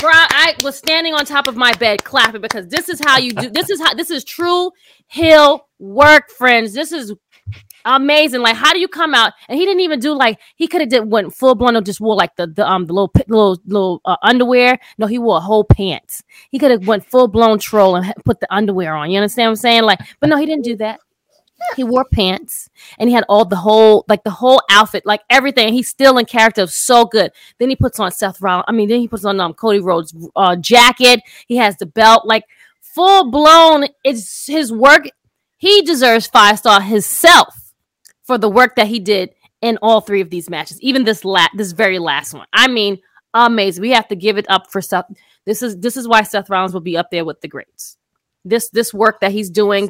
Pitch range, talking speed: 195-260 Hz, 230 wpm